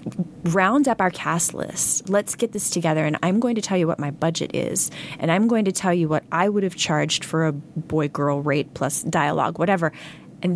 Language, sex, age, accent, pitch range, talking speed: English, female, 20-39, American, 155-190 Hz, 215 wpm